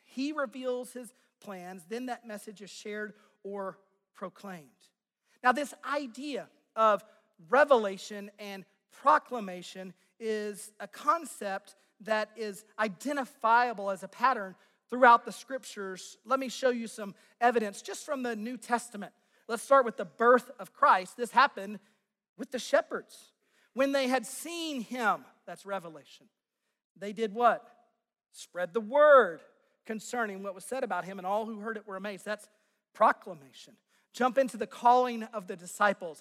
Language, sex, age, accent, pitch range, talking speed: English, male, 40-59, American, 200-245 Hz, 145 wpm